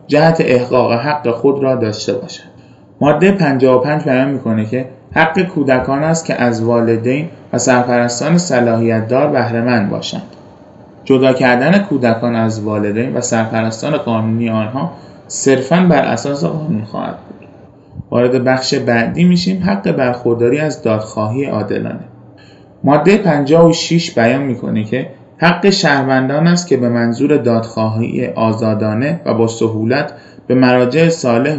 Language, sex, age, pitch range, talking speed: Persian, male, 20-39, 115-150 Hz, 125 wpm